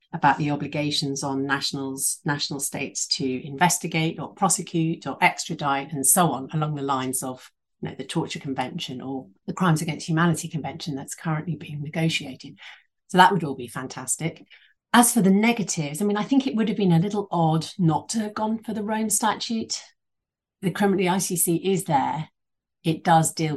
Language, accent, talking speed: English, British, 185 wpm